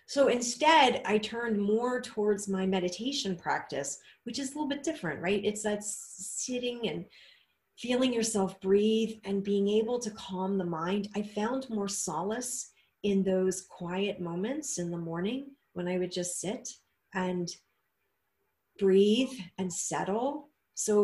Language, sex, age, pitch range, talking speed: English, female, 40-59, 185-220 Hz, 145 wpm